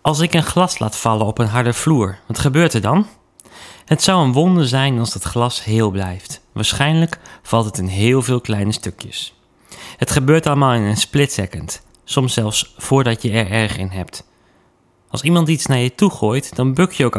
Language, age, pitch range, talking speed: Dutch, 30-49, 110-150 Hz, 205 wpm